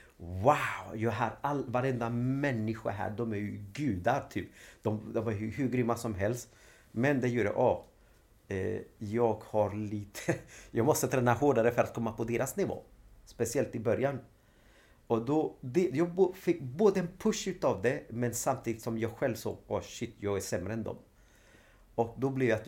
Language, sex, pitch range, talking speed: Swedish, male, 100-120 Hz, 195 wpm